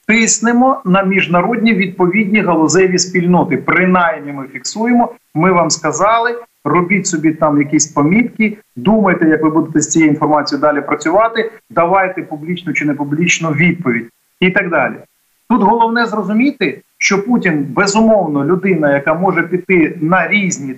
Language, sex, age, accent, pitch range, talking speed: Ukrainian, male, 40-59, native, 150-210 Hz, 135 wpm